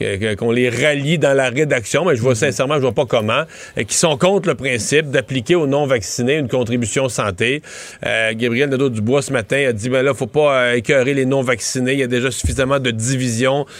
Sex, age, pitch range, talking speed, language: male, 30-49, 125-155 Hz, 215 wpm, French